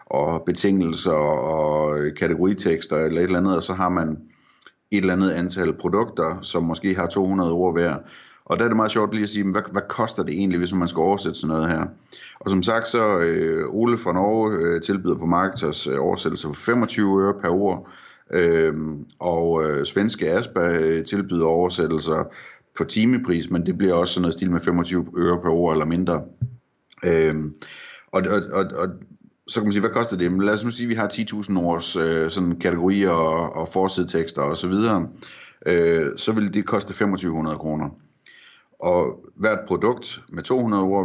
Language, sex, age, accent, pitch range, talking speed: Danish, male, 30-49, native, 85-100 Hz, 190 wpm